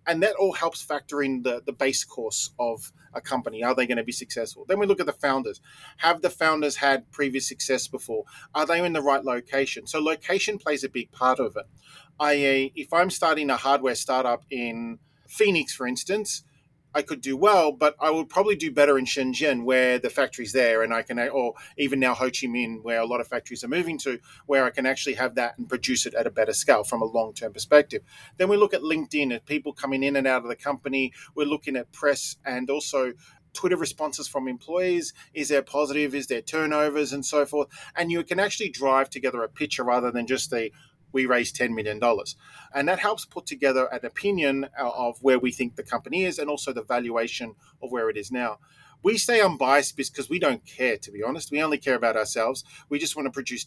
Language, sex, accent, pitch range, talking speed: English, male, Australian, 130-155 Hz, 220 wpm